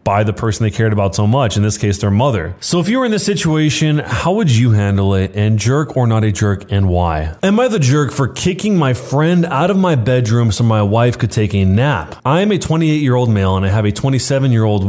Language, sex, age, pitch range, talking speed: English, male, 20-39, 105-150 Hz, 250 wpm